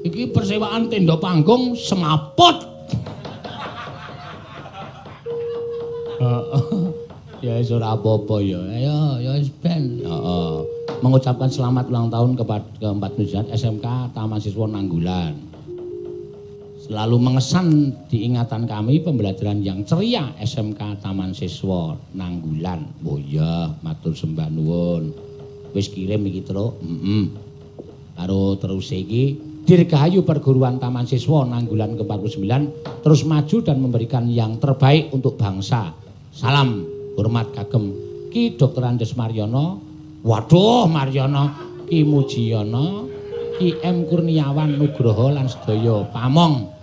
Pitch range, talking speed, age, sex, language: 110-155 Hz, 90 wpm, 50-69, male, Indonesian